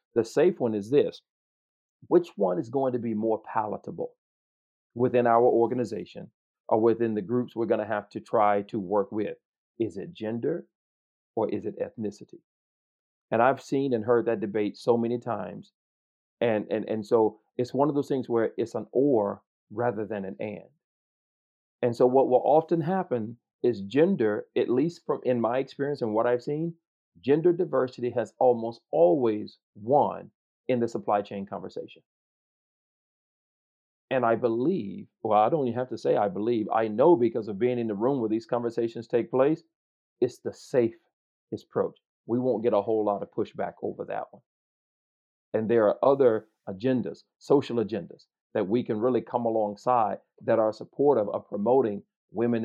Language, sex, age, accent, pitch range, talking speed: English, male, 40-59, American, 110-130 Hz, 170 wpm